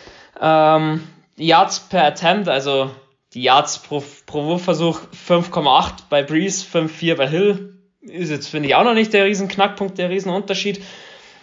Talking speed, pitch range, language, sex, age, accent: 150 wpm, 150-180 Hz, German, male, 20-39, German